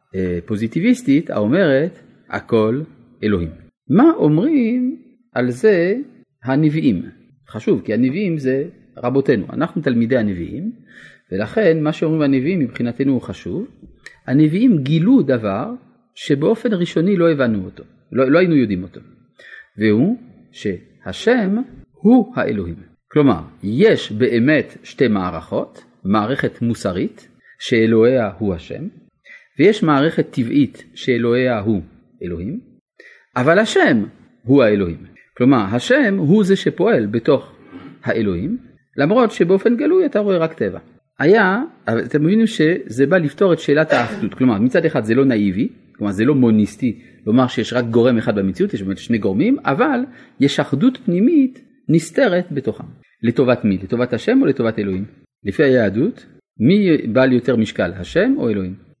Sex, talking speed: male, 100 wpm